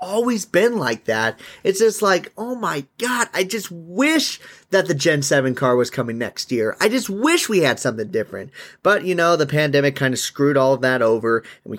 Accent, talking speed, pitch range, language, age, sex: American, 220 wpm, 120-165 Hz, English, 30-49, male